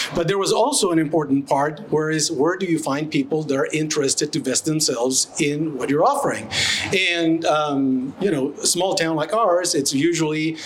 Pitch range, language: 145-175 Hz, English